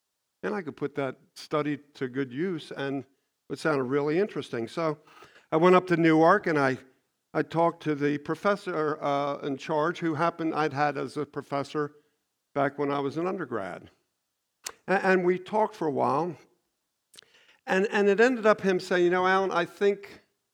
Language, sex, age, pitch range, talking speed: English, male, 50-69, 130-165 Hz, 180 wpm